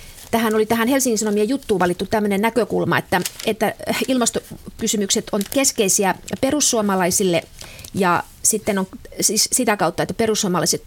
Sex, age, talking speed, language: female, 30-49, 125 wpm, Finnish